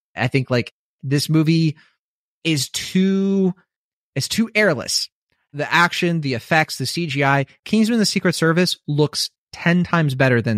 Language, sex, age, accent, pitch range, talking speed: English, male, 30-49, American, 145-205 Hz, 140 wpm